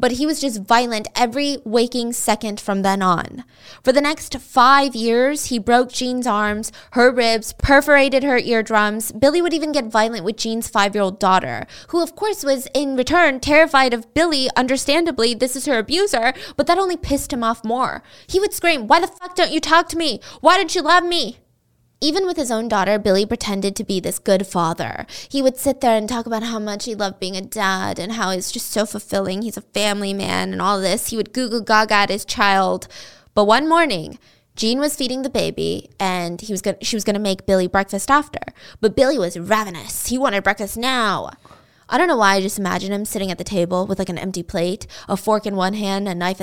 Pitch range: 200-280 Hz